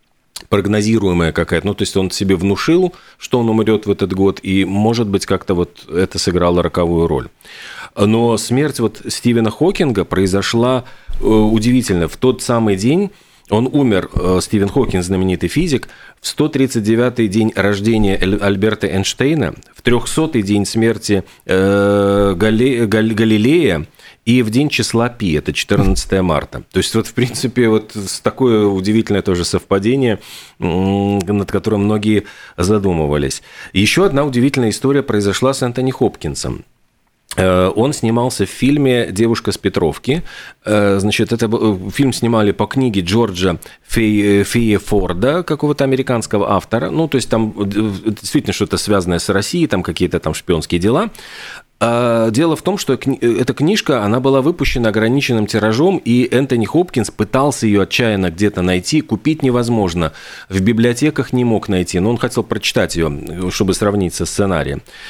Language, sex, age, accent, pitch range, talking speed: Russian, male, 40-59, native, 100-125 Hz, 140 wpm